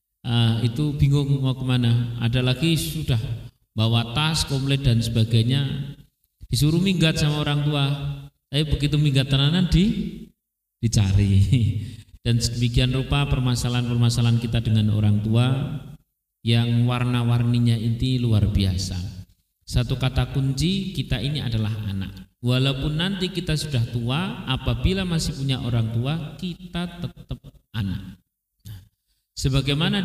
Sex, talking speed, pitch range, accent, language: male, 120 wpm, 115-140 Hz, native, Indonesian